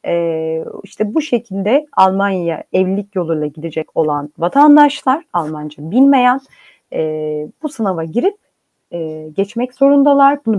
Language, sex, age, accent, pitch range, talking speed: Turkish, female, 30-49, native, 190-280 Hz, 115 wpm